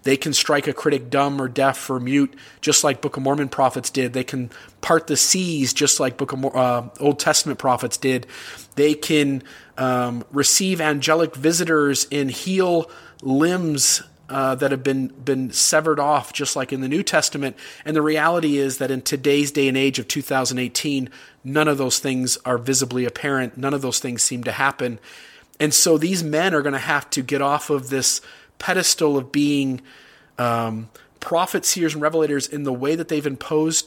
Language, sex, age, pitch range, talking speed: English, male, 30-49, 130-155 Hz, 190 wpm